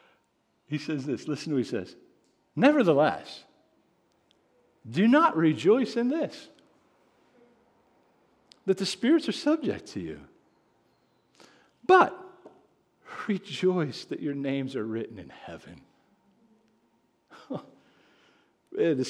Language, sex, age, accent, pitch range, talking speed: English, male, 50-69, American, 120-200 Hz, 95 wpm